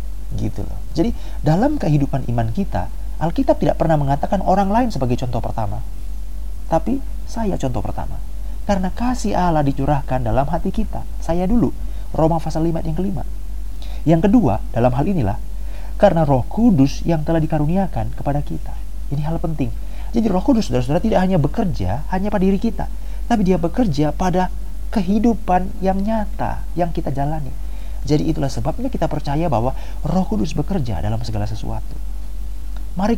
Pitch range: 115-185 Hz